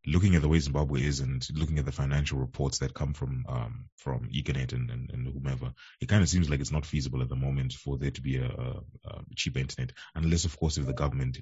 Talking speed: 250 wpm